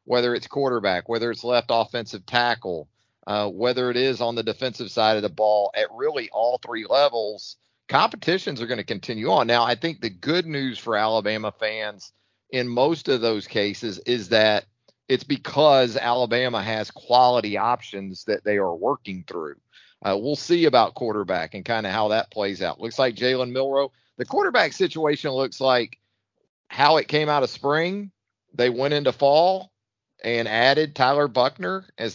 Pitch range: 115-140 Hz